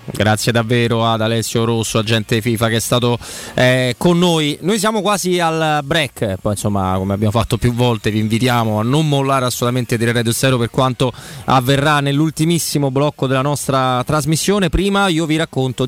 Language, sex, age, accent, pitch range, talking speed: Italian, male, 30-49, native, 120-155 Hz, 175 wpm